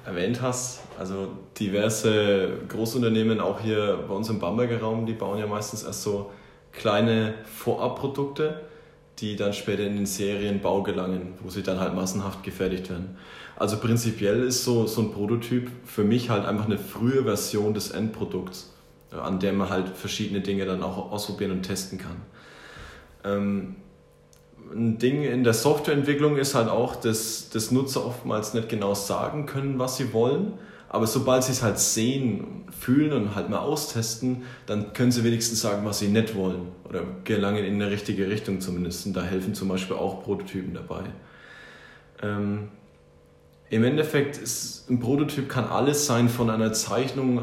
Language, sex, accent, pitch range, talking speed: German, male, German, 100-125 Hz, 160 wpm